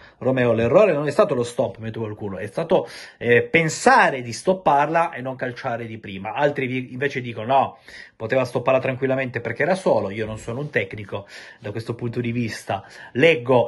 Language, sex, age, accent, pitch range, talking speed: Italian, male, 30-49, native, 105-130 Hz, 175 wpm